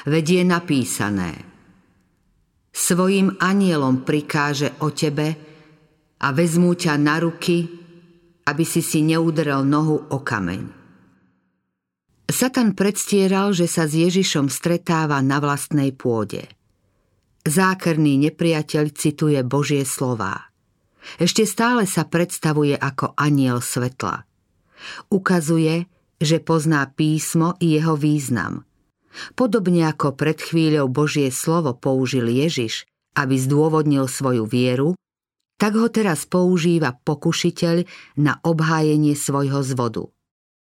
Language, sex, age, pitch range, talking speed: Slovak, female, 50-69, 140-175 Hz, 100 wpm